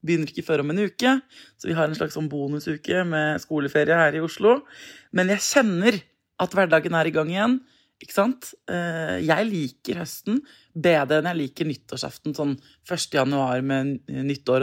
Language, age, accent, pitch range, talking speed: English, 20-39, Swedish, 155-210 Hz, 175 wpm